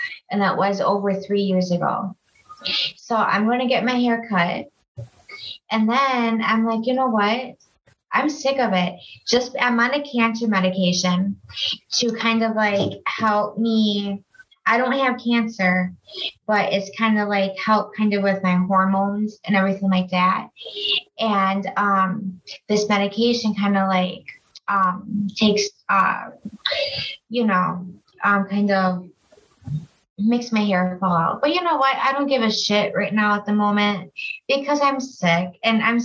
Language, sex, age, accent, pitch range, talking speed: English, female, 20-39, American, 190-240 Hz, 160 wpm